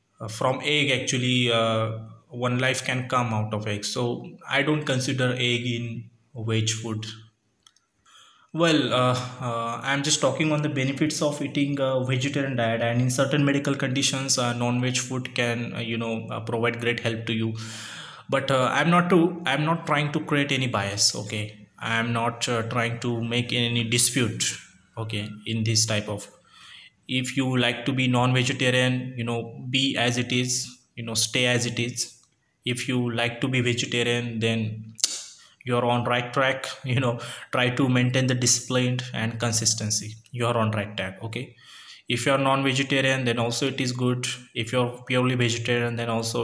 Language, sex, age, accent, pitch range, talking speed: English, male, 20-39, Indian, 115-130 Hz, 175 wpm